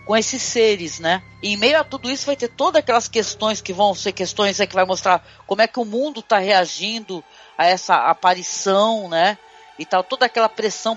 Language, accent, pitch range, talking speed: Portuguese, Brazilian, 185-245 Hz, 200 wpm